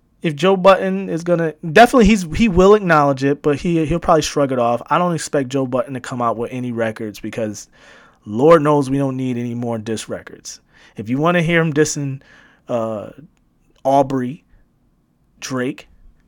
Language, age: English, 30-49